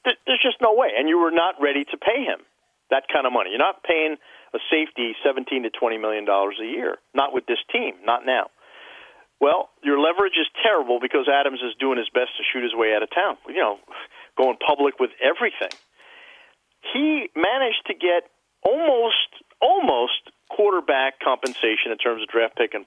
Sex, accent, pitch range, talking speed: male, American, 125-180 Hz, 190 wpm